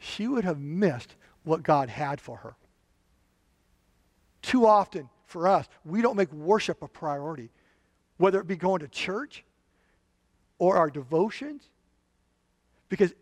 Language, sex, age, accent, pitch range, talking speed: English, male, 50-69, American, 135-200 Hz, 130 wpm